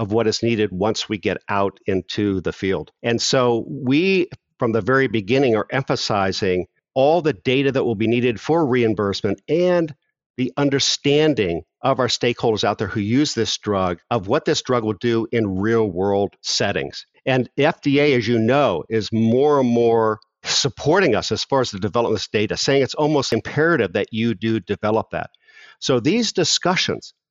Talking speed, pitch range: 180 wpm, 110-145 Hz